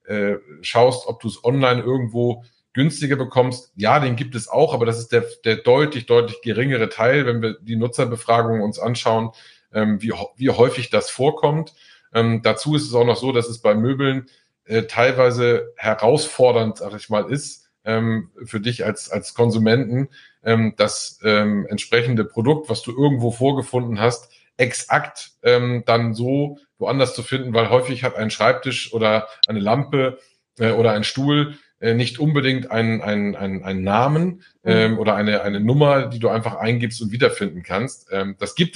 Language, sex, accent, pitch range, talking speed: German, male, German, 110-130 Hz, 170 wpm